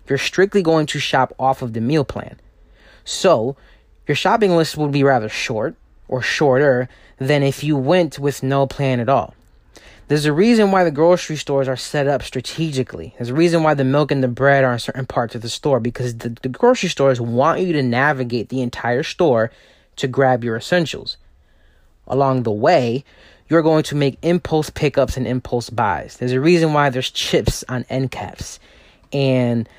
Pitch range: 125-150 Hz